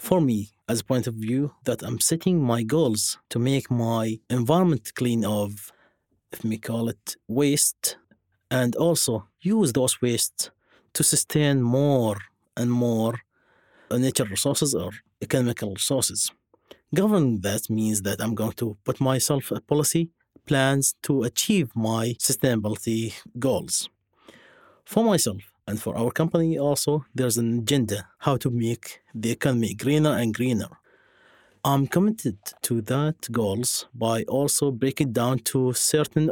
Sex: male